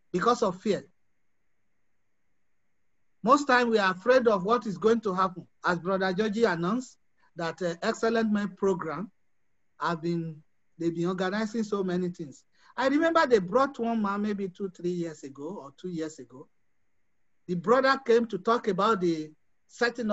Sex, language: male, English